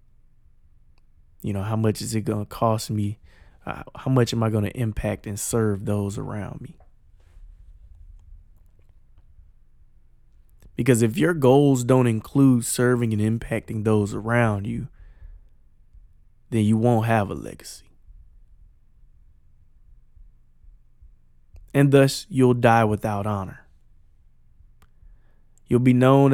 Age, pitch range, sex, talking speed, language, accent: 20-39, 100-125 Hz, male, 115 wpm, English, American